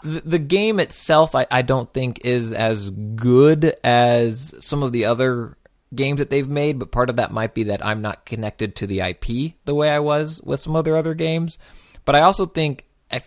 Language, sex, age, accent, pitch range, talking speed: English, male, 20-39, American, 105-145 Hz, 210 wpm